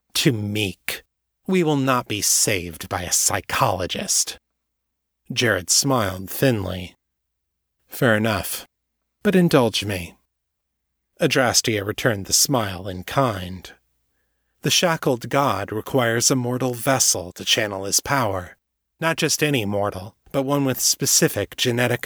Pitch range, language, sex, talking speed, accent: 100-145 Hz, English, male, 120 wpm, American